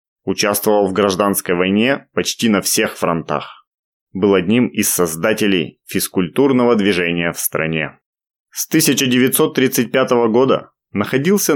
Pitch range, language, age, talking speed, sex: 95-130 Hz, Russian, 20-39, 105 wpm, male